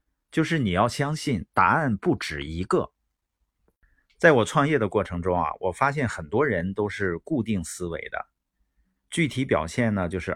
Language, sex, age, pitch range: Chinese, male, 50-69, 85-120 Hz